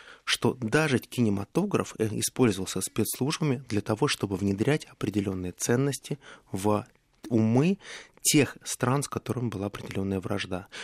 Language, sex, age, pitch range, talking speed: Russian, male, 20-39, 105-140 Hz, 110 wpm